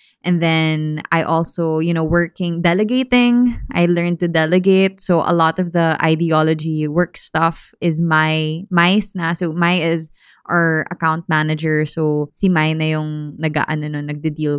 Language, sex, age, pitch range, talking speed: English, female, 20-39, 160-205 Hz, 155 wpm